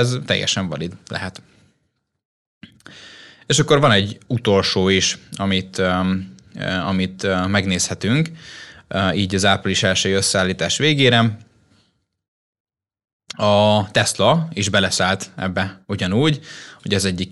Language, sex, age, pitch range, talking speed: Hungarian, male, 20-39, 95-115 Hz, 95 wpm